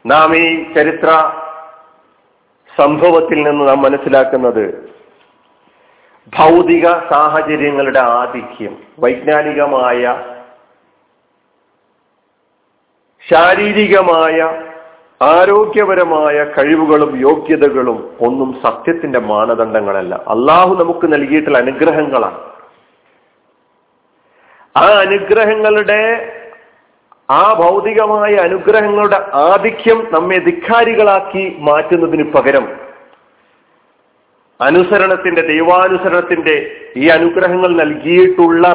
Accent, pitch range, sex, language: native, 145-190 Hz, male, Malayalam